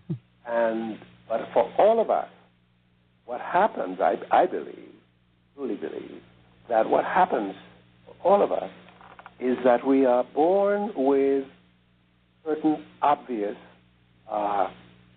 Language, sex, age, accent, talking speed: English, male, 60-79, American, 115 wpm